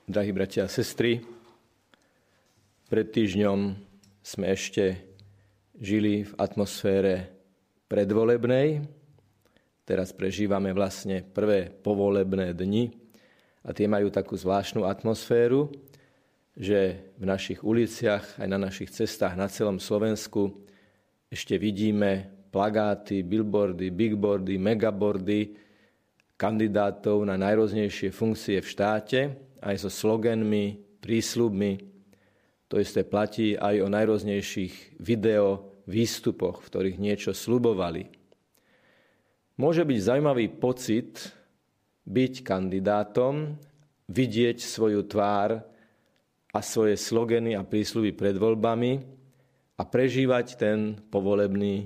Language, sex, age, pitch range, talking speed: Slovak, male, 40-59, 100-115 Hz, 95 wpm